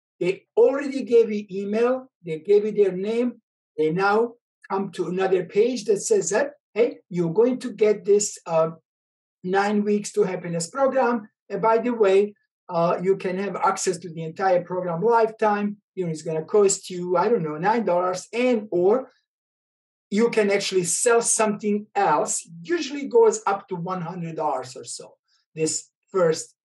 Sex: male